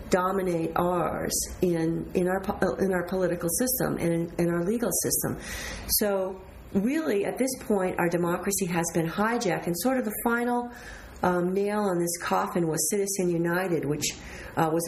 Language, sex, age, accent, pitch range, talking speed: English, female, 40-59, American, 170-205 Hz, 165 wpm